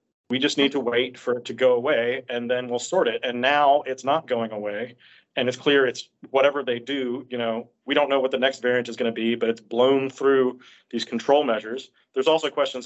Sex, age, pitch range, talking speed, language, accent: male, 40-59, 115-140 Hz, 240 wpm, English, American